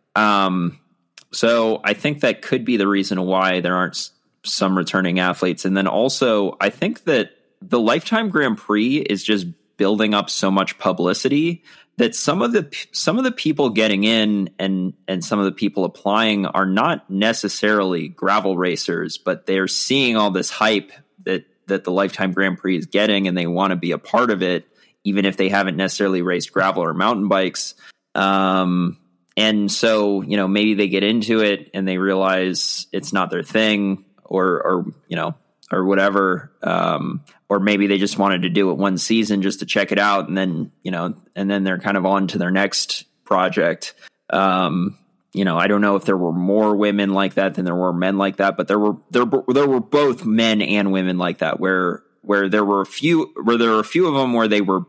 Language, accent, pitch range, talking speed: English, American, 95-105 Hz, 205 wpm